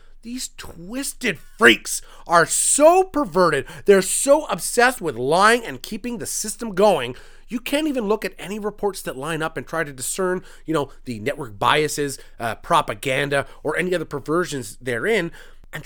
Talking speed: 165 wpm